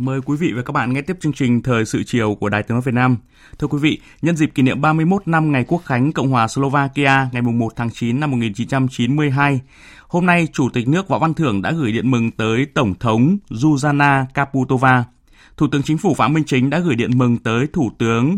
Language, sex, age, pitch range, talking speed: Vietnamese, male, 20-39, 120-155 Hz, 235 wpm